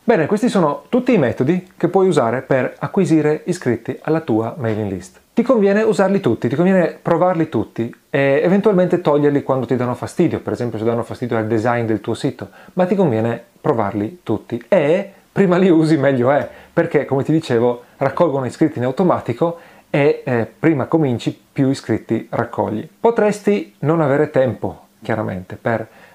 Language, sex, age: Italian, male, 40-59